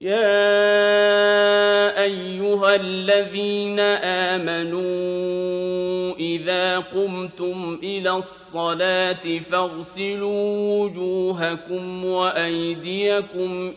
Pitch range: 170-195 Hz